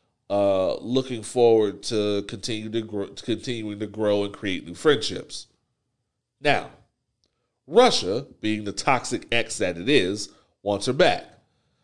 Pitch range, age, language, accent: 110-135 Hz, 40-59, English, American